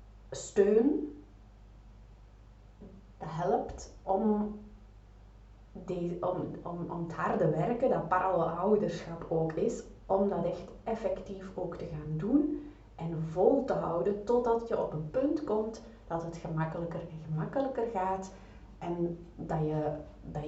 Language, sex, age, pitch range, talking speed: Dutch, female, 30-49, 140-190 Hz, 125 wpm